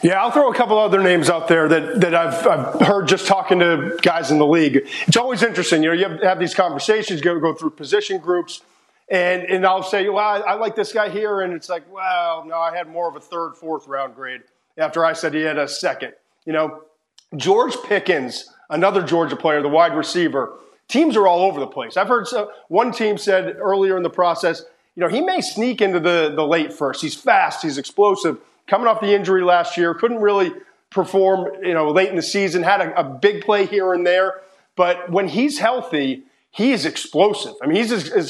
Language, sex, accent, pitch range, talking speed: English, male, American, 165-205 Hz, 225 wpm